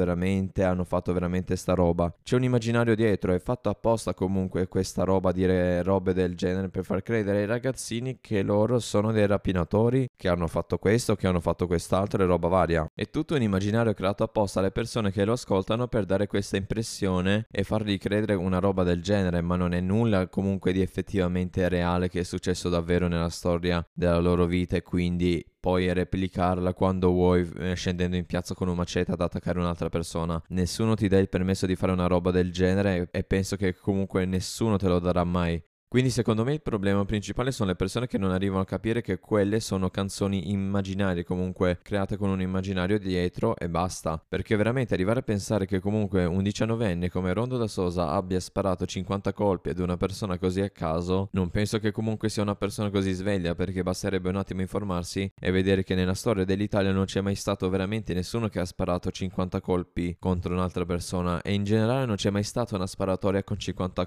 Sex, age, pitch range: male, 20-39, 90-105 Hz